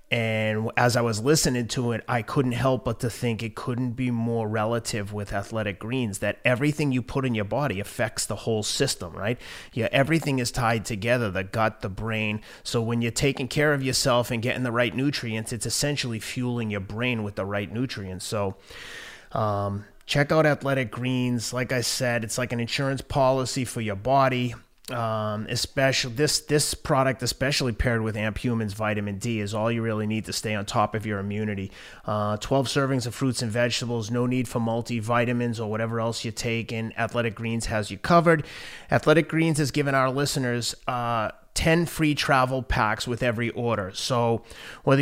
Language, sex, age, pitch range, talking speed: English, male, 30-49, 115-135 Hz, 190 wpm